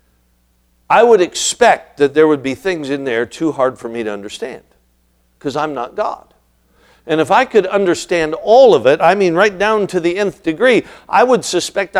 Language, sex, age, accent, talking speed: English, male, 60-79, American, 195 wpm